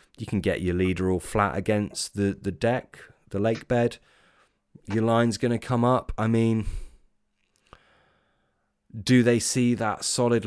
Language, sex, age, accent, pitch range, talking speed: English, male, 20-39, British, 85-110 Hz, 155 wpm